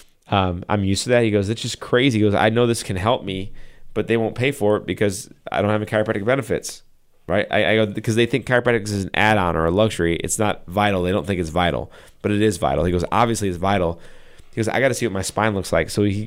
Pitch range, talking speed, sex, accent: 90-110 Hz, 275 wpm, male, American